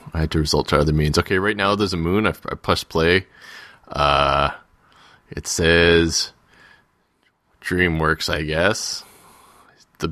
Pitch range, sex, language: 75-90 Hz, male, English